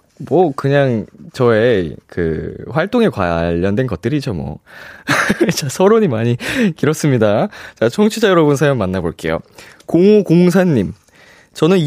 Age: 20-39